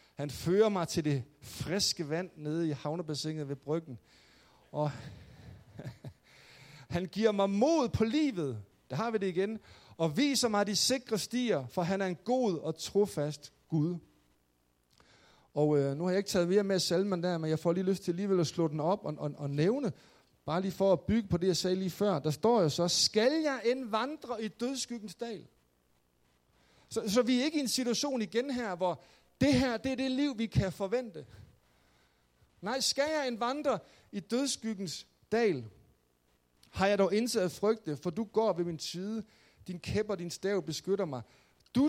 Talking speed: 190 wpm